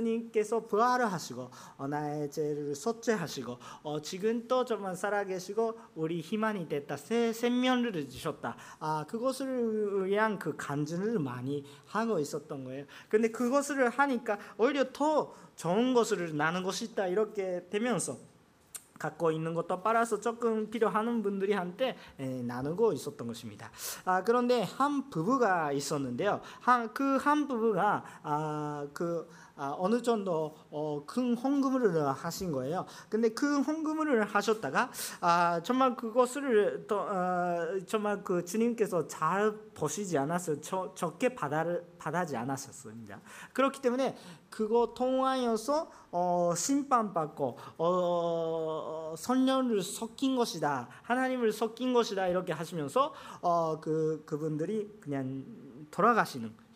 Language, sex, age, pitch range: Japanese, male, 40-59, 155-235 Hz